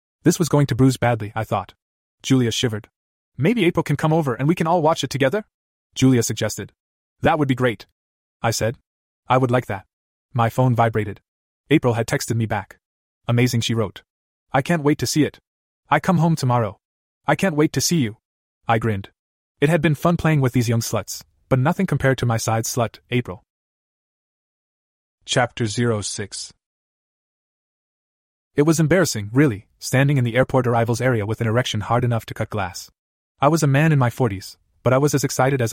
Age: 30-49